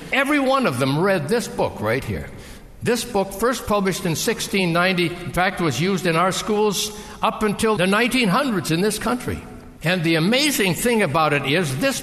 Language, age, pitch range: English, 60-79, 140-235 Hz